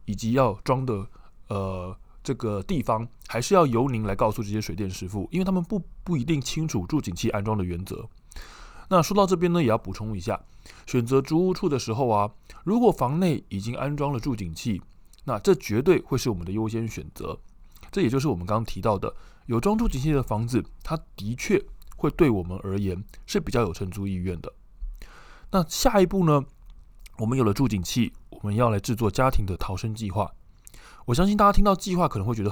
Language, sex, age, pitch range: Chinese, male, 20-39, 100-150 Hz